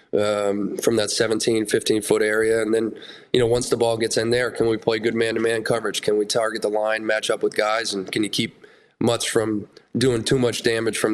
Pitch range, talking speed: 105-120 Hz, 225 wpm